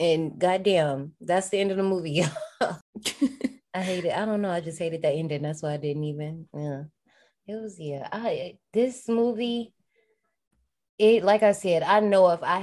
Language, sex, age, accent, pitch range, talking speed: English, female, 20-39, American, 145-185 Hz, 185 wpm